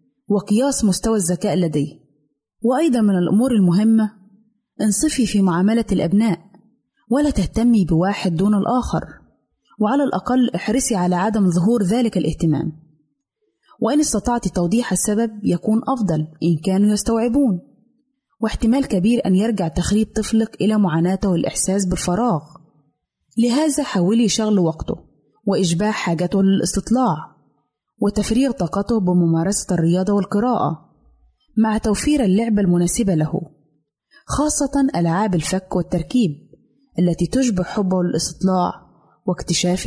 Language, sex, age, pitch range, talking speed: Arabic, female, 20-39, 175-225 Hz, 105 wpm